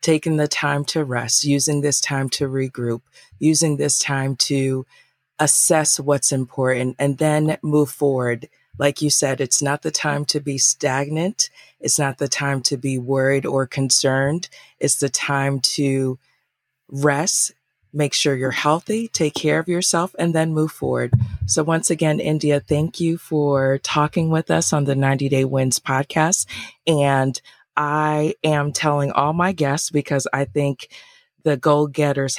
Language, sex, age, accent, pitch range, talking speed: English, female, 30-49, American, 135-150 Hz, 160 wpm